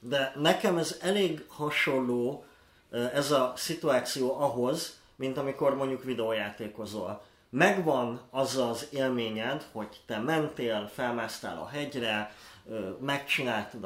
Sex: male